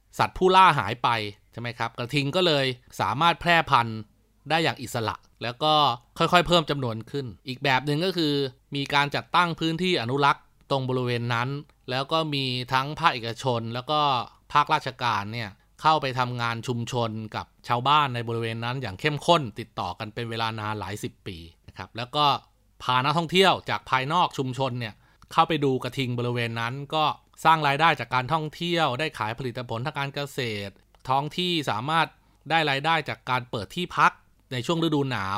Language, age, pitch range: Thai, 20-39, 115-155 Hz